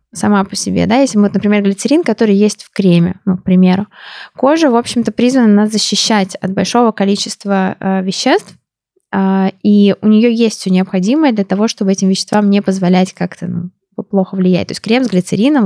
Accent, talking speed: native, 190 wpm